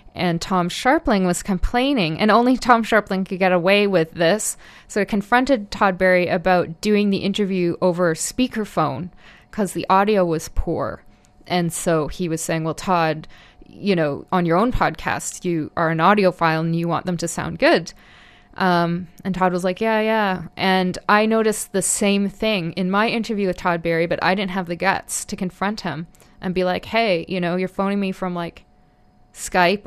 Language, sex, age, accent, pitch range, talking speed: English, female, 20-39, American, 175-205 Hz, 190 wpm